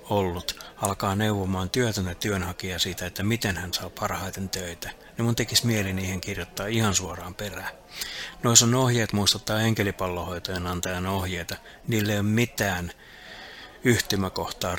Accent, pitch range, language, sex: native, 95-110 Hz, Finnish, male